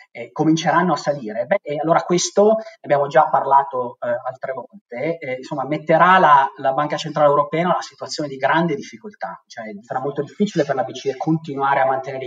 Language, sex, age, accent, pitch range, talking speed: Italian, male, 30-49, native, 140-175 Hz, 185 wpm